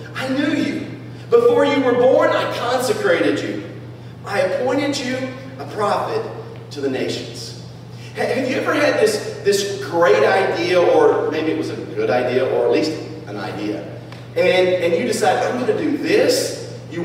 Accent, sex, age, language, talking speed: American, male, 40-59, English, 170 wpm